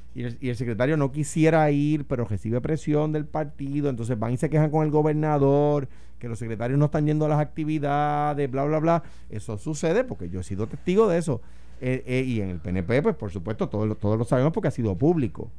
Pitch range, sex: 105-150 Hz, male